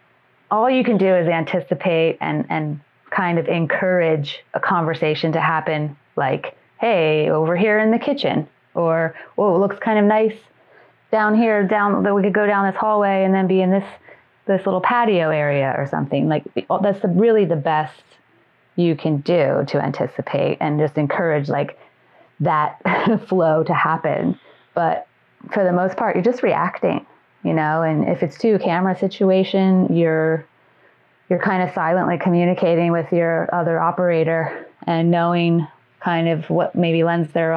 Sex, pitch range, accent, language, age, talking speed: female, 160-190 Hz, American, English, 30-49, 160 wpm